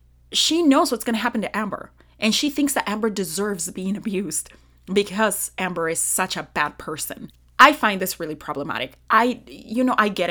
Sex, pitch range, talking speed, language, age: female, 170-220 Hz, 190 wpm, English, 30-49